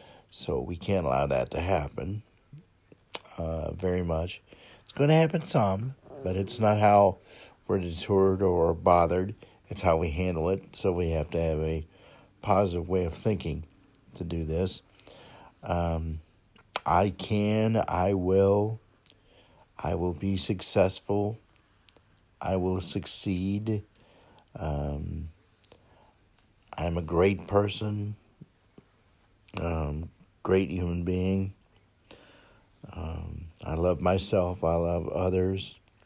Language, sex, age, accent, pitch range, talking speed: English, male, 50-69, American, 85-105 Hz, 115 wpm